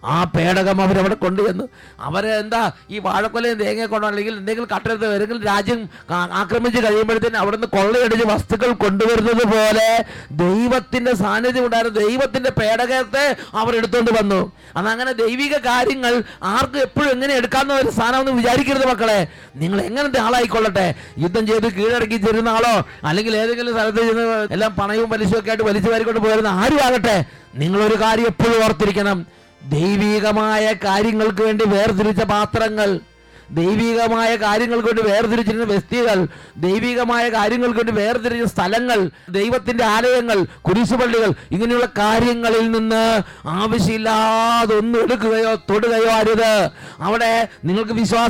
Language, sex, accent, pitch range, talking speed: English, male, Indian, 205-235 Hz, 70 wpm